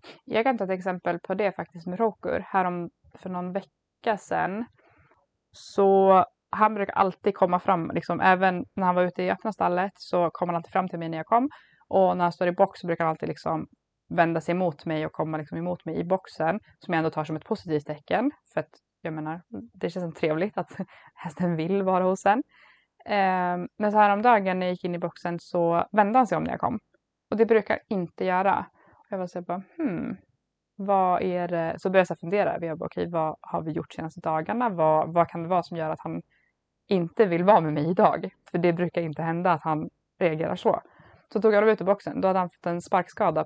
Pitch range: 170-205 Hz